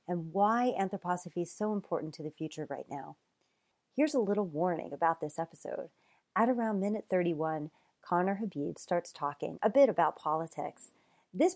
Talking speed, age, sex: 160 wpm, 30-49, female